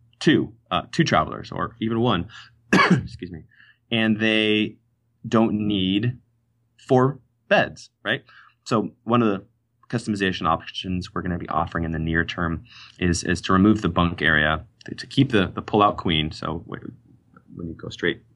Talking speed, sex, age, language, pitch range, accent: 165 wpm, male, 20-39, English, 85-115 Hz, American